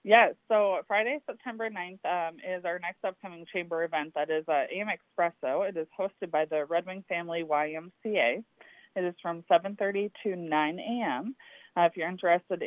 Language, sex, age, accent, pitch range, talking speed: English, female, 20-39, American, 155-195 Hz, 170 wpm